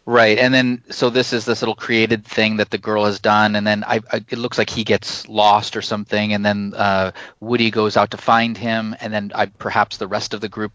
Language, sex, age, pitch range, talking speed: English, male, 30-49, 105-125 Hz, 235 wpm